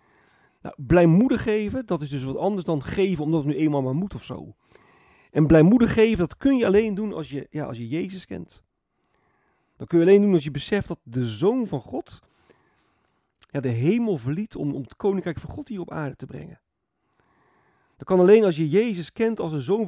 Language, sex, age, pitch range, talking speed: Dutch, male, 40-59, 145-195 Hz, 215 wpm